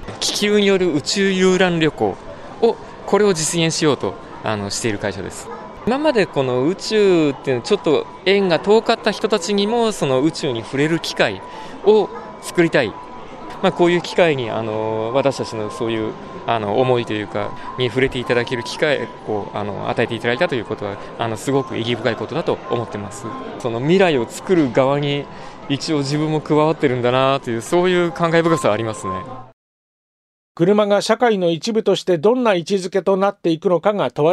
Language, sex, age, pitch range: Japanese, male, 20-39, 130-200 Hz